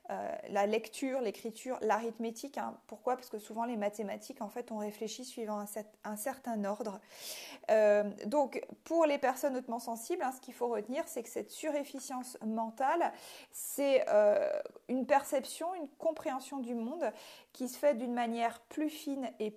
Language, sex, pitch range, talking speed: French, female, 220-275 Hz, 160 wpm